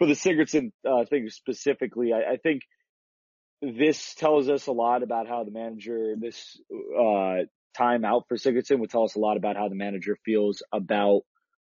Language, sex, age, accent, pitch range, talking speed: English, male, 30-49, American, 105-130 Hz, 180 wpm